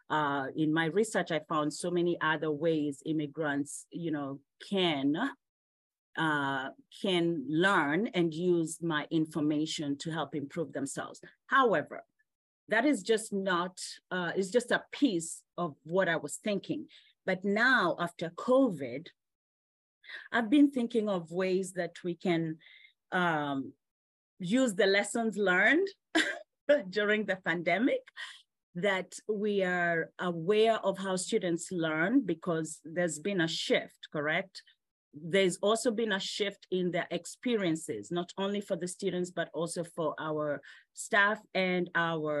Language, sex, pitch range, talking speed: English, female, 160-210 Hz, 130 wpm